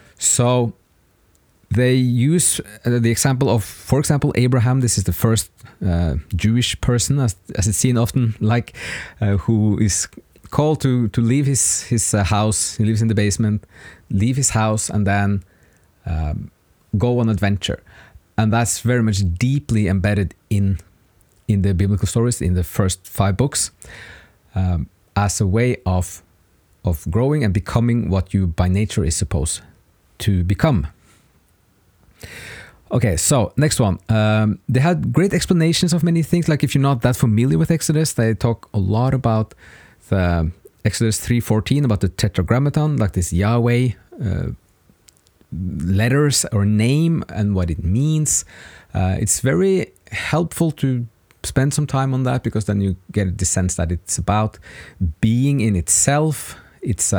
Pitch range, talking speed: 95-125 Hz, 150 wpm